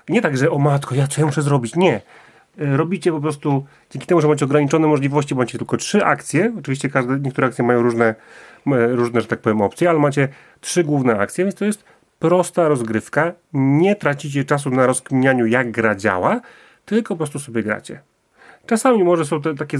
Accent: native